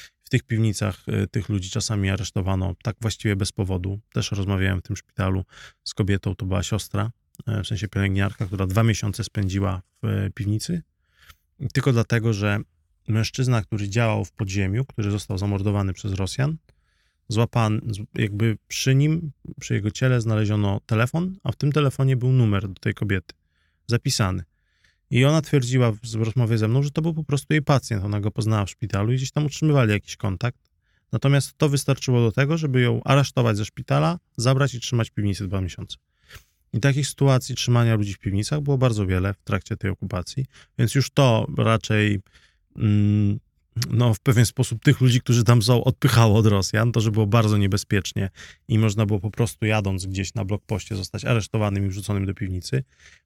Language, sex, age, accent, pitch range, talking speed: Polish, male, 20-39, native, 100-125 Hz, 175 wpm